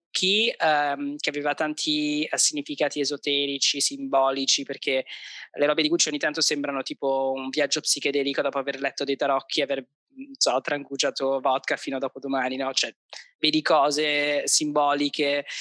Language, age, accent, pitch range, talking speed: Italian, 20-39, native, 145-170 Hz, 140 wpm